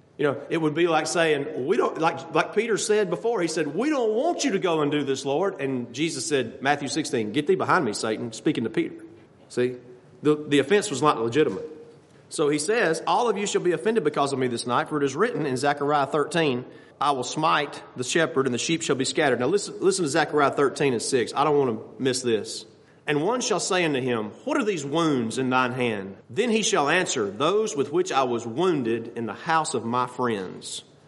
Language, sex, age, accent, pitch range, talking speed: English, male, 40-59, American, 130-170 Hz, 235 wpm